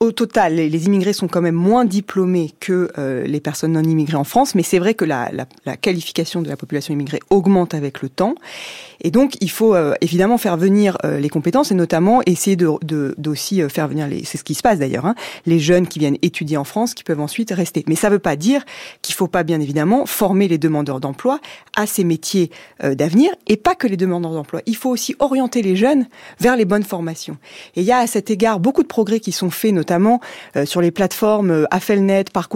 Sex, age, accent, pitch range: female, 30-49, French, 165-225 Hz